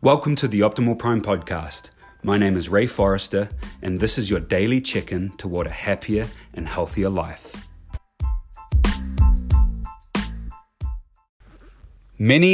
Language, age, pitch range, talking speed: English, 30-49, 90-105 Hz, 115 wpm